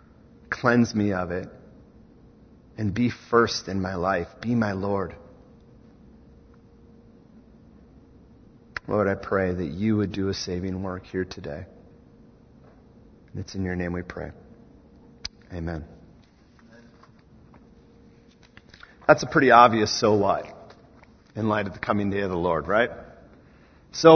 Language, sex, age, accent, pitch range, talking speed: English, male, 40-59, American, 95-155 Hz, 120 wpm